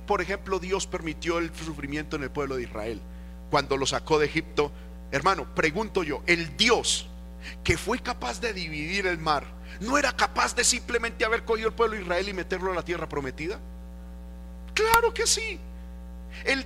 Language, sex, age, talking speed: Spanish, male, 40-59, 175 wpm